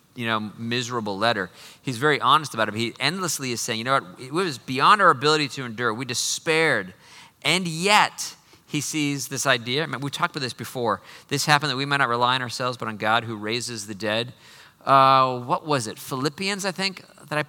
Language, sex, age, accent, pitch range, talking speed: English, male, 40-59, American, 120-150 Hz, 220 wpm